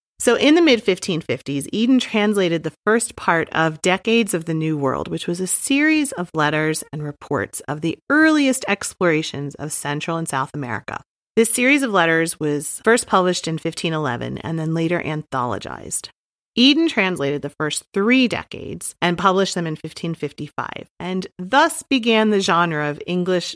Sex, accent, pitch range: female, American, 145-195 Hz